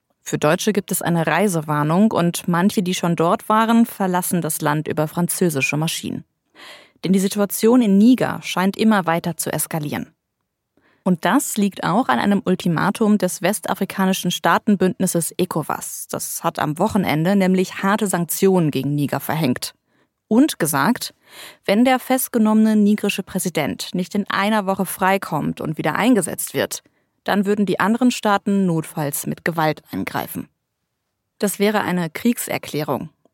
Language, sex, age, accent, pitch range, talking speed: German, female, 20-39, German, 160-205 Hz, 140 wpm